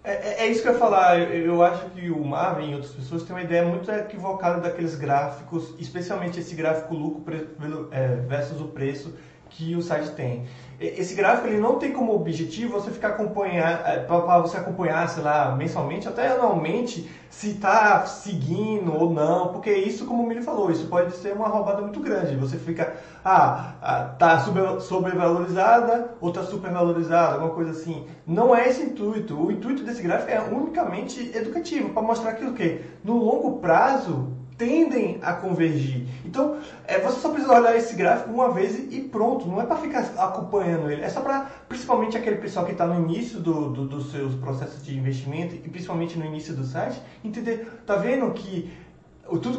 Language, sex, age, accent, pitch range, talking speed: Portuguese, male, 20-39, Brazilian, 160-225 Hz, 180 wpm